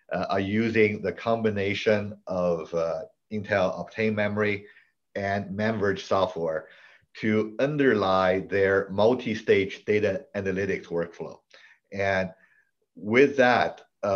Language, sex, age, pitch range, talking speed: English, male, 50-69, 95-110 Hz, 100 wpm